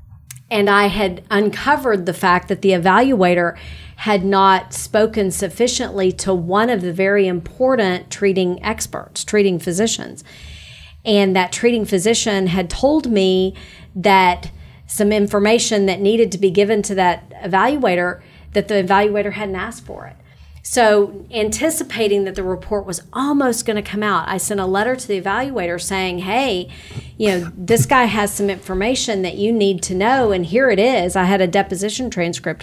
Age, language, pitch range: 40-59, English, 185-215 Hz